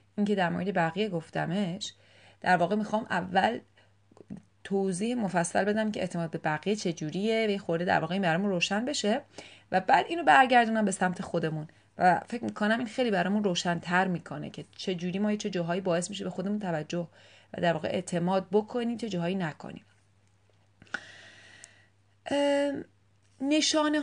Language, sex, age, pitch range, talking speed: Persian, female, 30-49, 170-215 Hz, 150 wpm